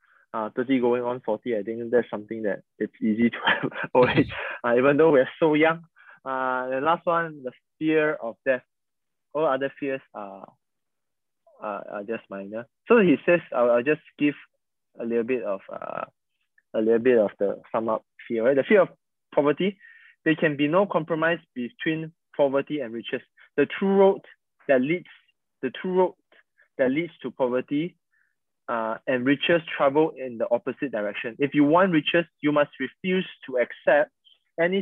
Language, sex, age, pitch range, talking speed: English, male, 20-39, 125-165 Hz, 170 wpm